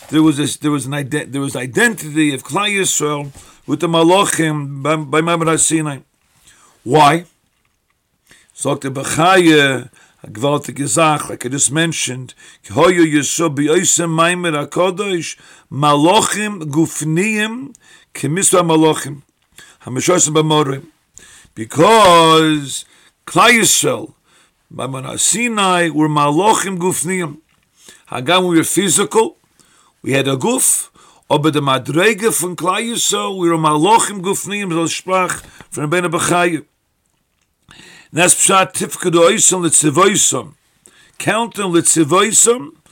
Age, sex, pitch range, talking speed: 50-69, male, 150-185 Hz, 110 wpm